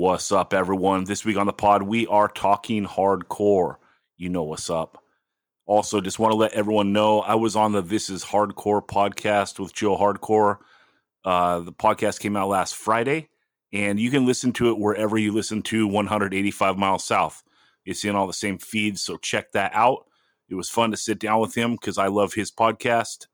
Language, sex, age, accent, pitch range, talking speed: English, male, 30-49, American, 100-115 Hz, 200 wpm